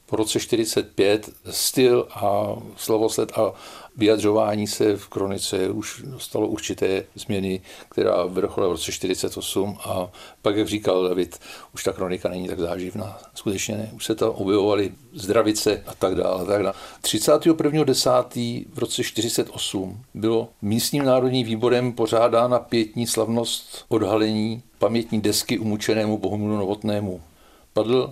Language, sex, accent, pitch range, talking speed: Czech, male, native, 105-120 Hz, 130 wpm